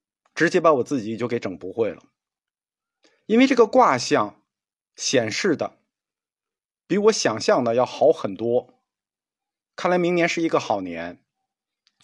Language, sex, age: Chinese, male, 50-69